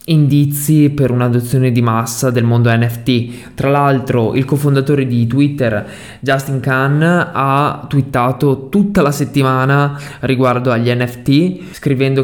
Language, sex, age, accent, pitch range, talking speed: Italian, male, 20-39, native, 125-150 Hz, 125 wpm